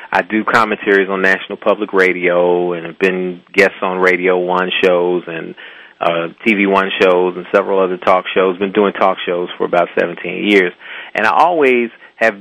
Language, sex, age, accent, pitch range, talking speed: English, male, 40-59, American, 90-110 Hz, 180 wpm